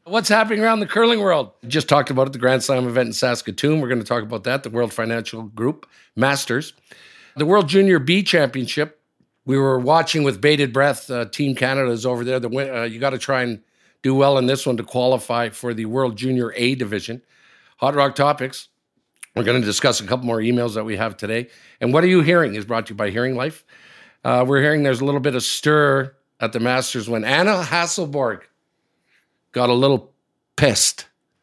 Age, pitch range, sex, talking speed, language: 50-69, 125-175 Hz, male, 210 wpm, English